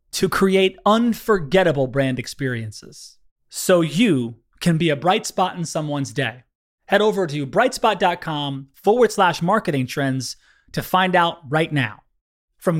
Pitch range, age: 145-210 Hz, 30-49